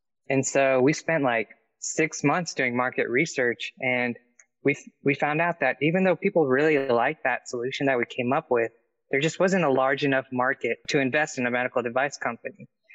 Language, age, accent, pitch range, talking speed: English, 20-39, American, 120-140 Hz, 200 wpm